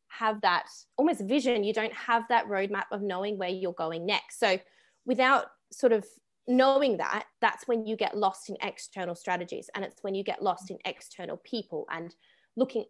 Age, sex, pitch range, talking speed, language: 20-39, female, 190-250 Hz, 185 wpm, English